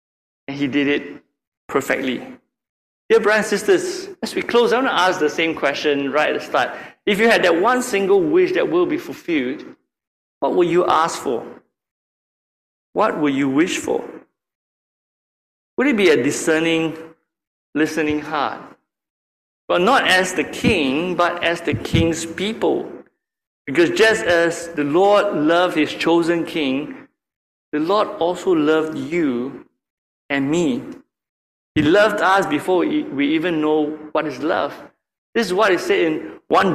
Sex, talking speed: male, 155 wpm